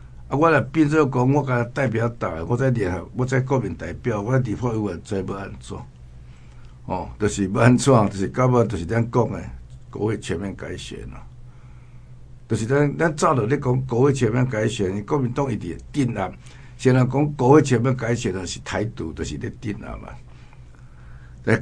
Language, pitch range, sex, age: Chinese, 85-125 Hz, male, 60-79